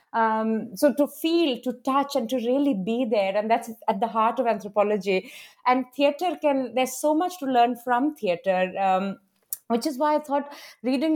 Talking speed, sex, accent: 190 wpm, female, Indian